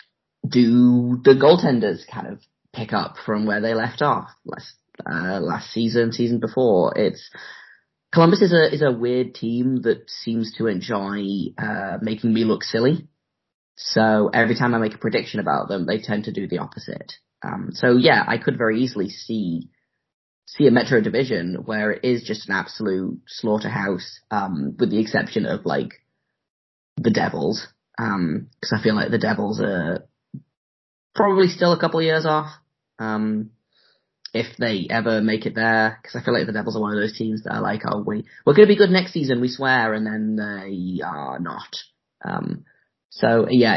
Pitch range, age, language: 105-125 Hz, 10-29, English